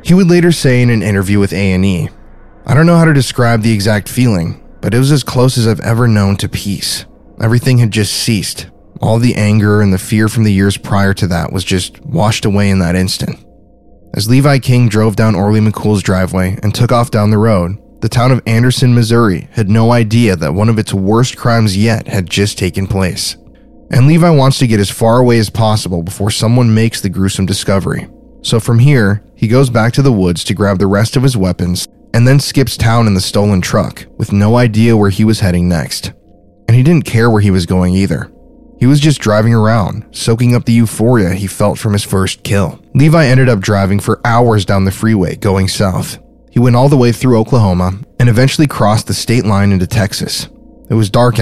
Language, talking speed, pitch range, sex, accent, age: English, 220 wpm, 100-120 Hz, male, American, 10-29